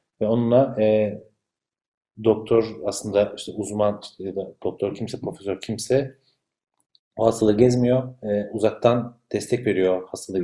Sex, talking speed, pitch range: male, 115 wpm, 110-130 Hz